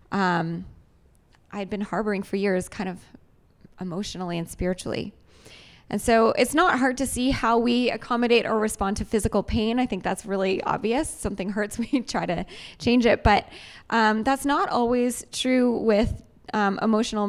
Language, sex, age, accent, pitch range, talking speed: English, female, 20-39, American, 195-245 Hz, 165 wpm